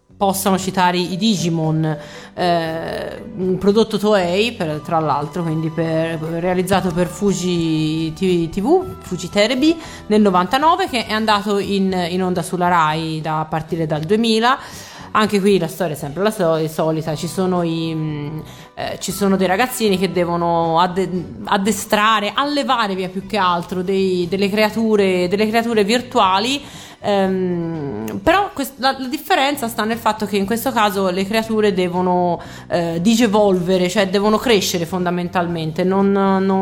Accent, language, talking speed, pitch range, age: native, Italian, 150 wpm, 165-205 Hz, 30-49